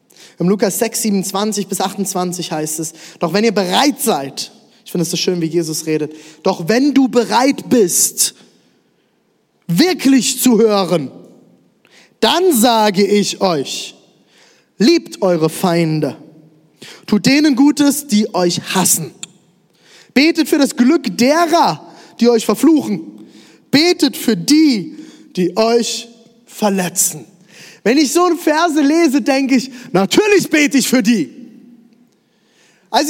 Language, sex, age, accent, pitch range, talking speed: German, male, 20-39, German, 195-295 Hz, 125 wpm